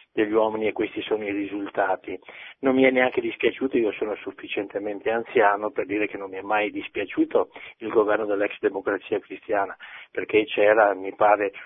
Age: 50-69